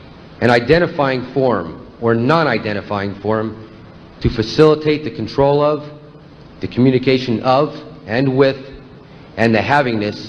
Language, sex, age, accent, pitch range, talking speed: English, male, 50-69, American, 105-135 Hz, 110 wpm